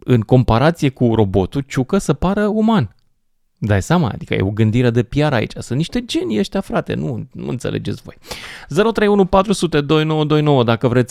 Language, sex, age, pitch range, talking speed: Romanian, male, 20-39, 105-145 Hz, 160 wpm